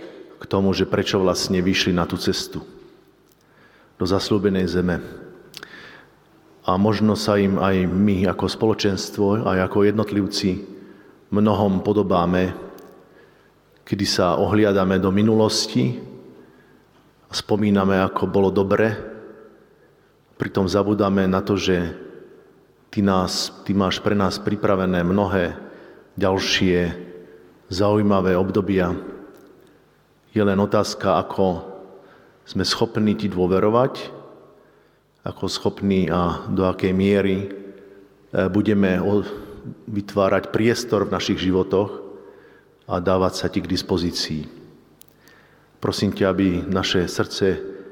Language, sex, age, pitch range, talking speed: Slovak, male, 40-59, 95-100 Hz, 100 wpm